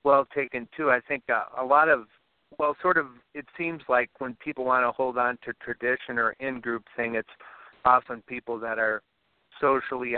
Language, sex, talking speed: English, male, 190 wpm